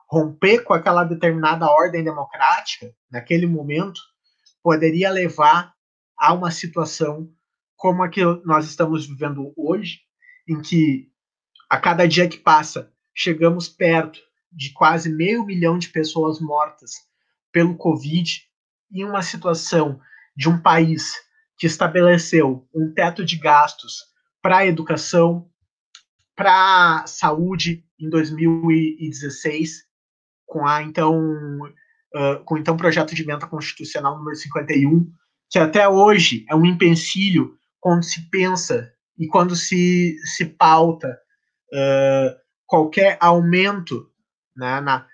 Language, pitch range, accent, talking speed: Portuguese, 155-180 Hz, Brazilian, 115 wpm